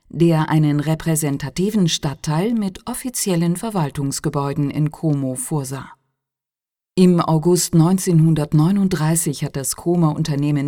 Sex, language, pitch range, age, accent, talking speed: female, Italian, 140-185 Hz, 50-69, German, 90 wpm